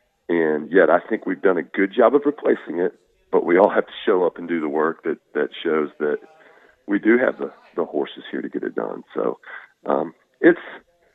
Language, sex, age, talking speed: English, male, 40-59, 220 wpm